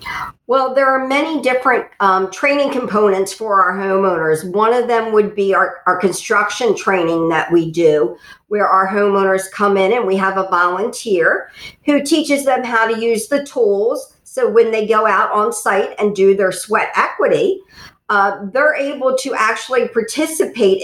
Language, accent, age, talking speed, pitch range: English, American, 50-69, 170 wpm, 190-240 Hz